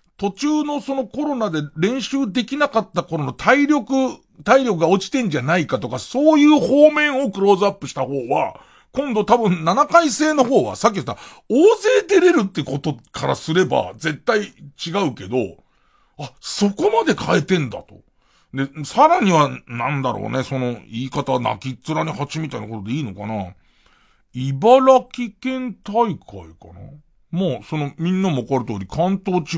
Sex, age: male, 40-59